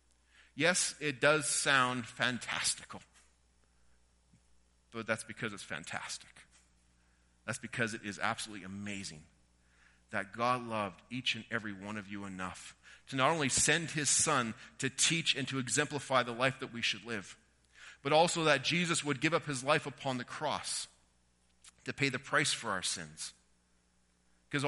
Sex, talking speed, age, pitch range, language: male, 155 wpm, 40-59, 95-140 Hz, English